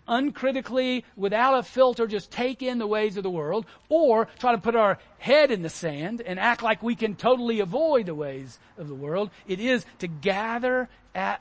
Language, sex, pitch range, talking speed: English, male, 160-235 Hz, 200 wpm